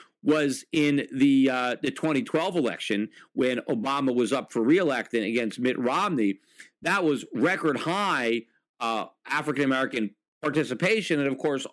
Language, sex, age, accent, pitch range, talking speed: English, male, 50-69, American, 130-175 Hz, 135 wpm